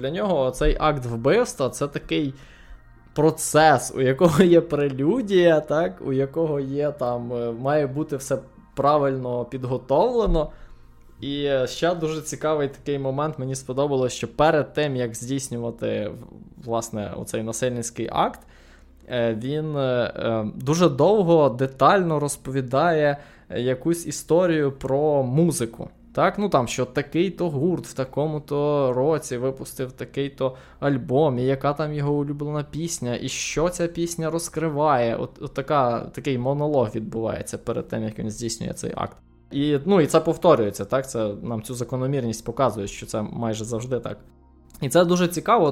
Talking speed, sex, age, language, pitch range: 135 wpm, male, 20-39, Ukrainian, 120-150 Hz